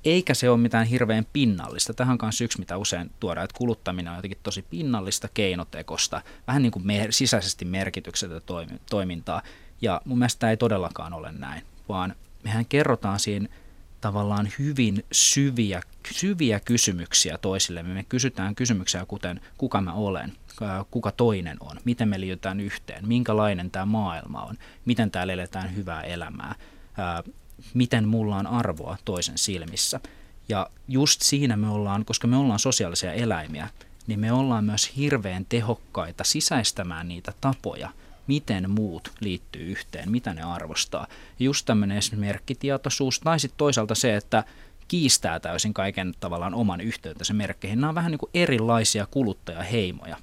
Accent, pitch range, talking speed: native, 95-120 Hz, 150 wpm